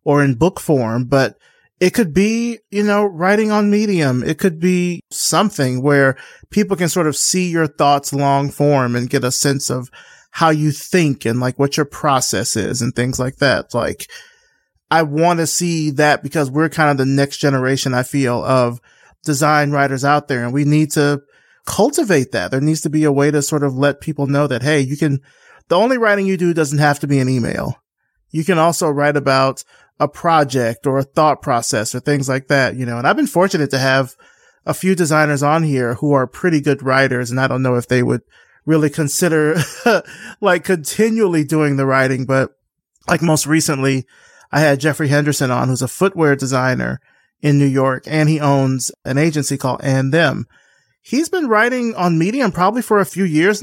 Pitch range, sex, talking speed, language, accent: 135-170 Hz, male, 200 wpm, English, American